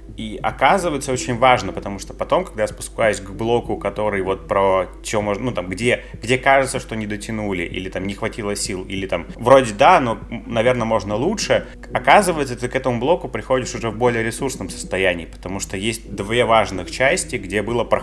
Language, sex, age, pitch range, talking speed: Russian, male, 30-49, 100-125 Hz, 190 wpm